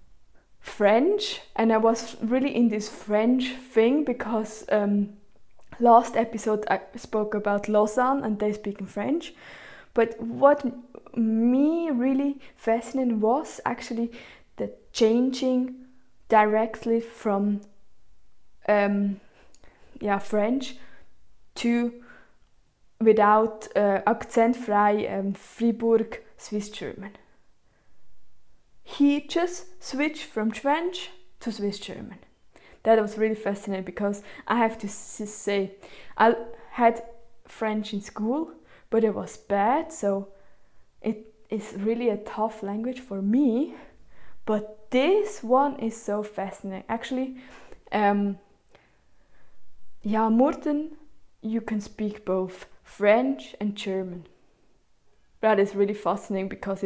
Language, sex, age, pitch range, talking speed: English, female, 20-39, 205-250 Hz, 110 wpm